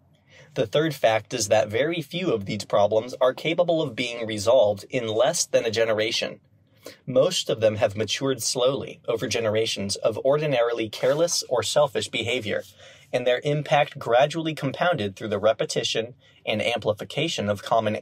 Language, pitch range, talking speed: English, 105-150 Hz, 155 wpm